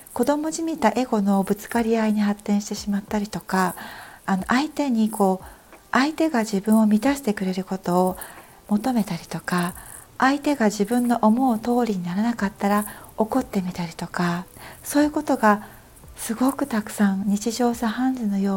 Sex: female